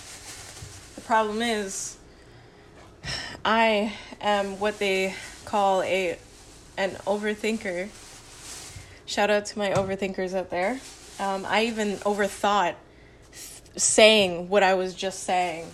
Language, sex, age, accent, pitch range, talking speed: English, female, 20-39, American, 185-220 Hz, 105 wpm